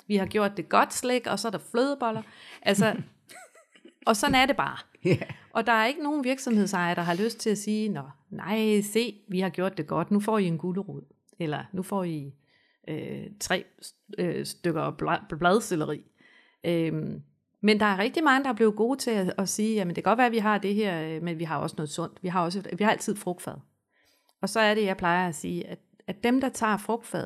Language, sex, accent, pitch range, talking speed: Danish, female, native, 175-230 Hz, 230 wpm